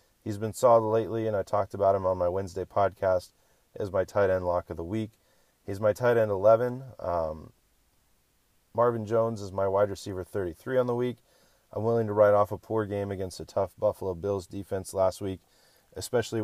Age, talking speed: 30-49, 195 wpm